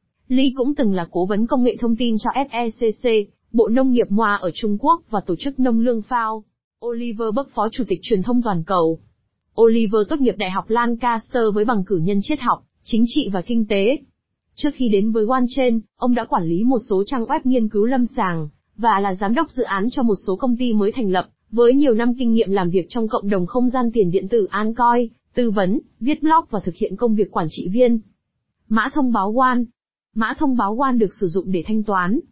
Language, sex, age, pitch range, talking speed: Vietnamese, female, 20-39, 205-245 Hz, 230 wpm